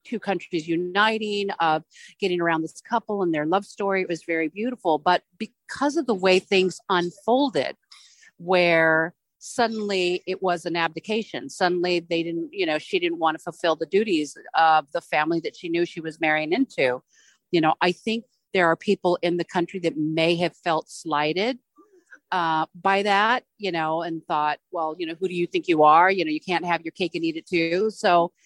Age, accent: 40-59, American